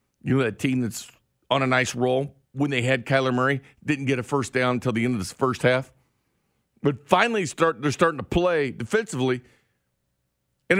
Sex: male